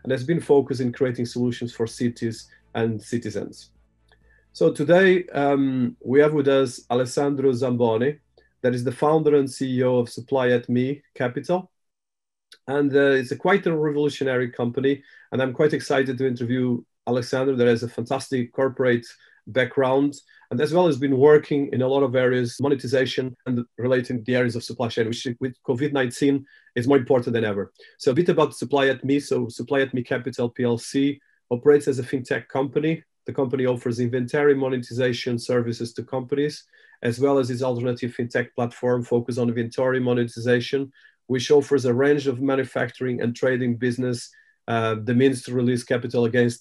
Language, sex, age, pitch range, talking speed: English, male, 40-59, 120-140 Hz, 170 wpm